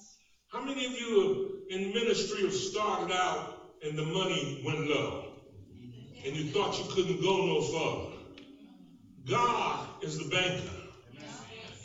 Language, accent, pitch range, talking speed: English, American, 130-185 Hz, 135 wpm